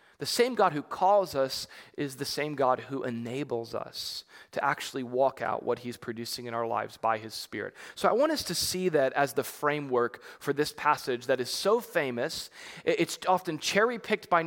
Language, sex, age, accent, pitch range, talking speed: English, male, 20-39, American, 125-170 Hz, 195 wpm